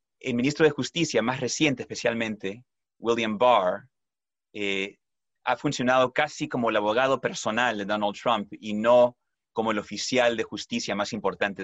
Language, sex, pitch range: Spanish, male, 100-130 Hz